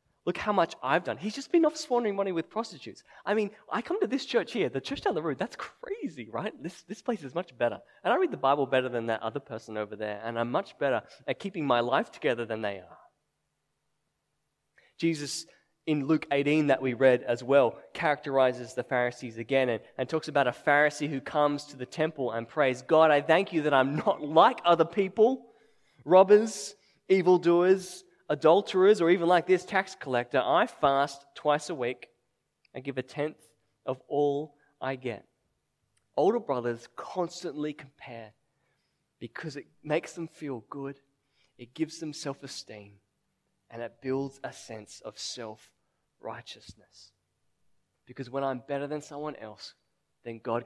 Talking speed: 175 wpm